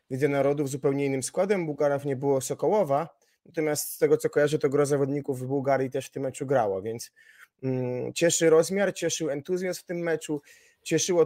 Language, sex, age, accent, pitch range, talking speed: Polish, male, 20-39, native, 145-165 Hz, 180 wpm